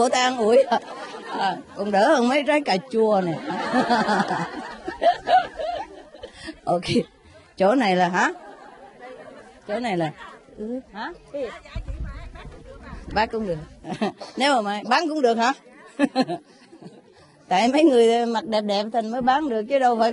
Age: 20-39